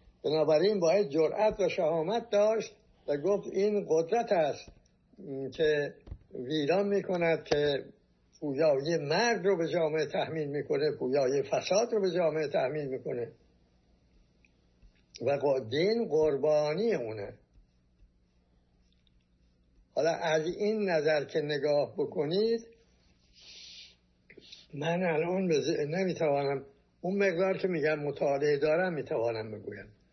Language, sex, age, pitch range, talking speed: Persian, male, 60-79, 115-175 Hz, 110 wpm